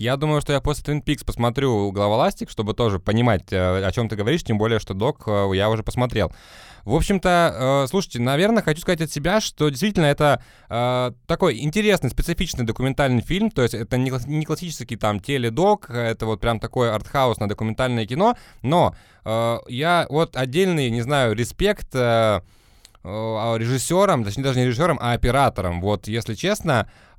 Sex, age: male, 20-39